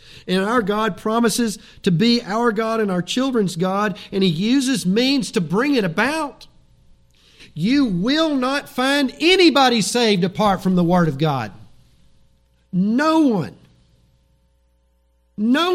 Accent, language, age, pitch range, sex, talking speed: American, English, 50-69, 135-225 Hz, male, 135 wpm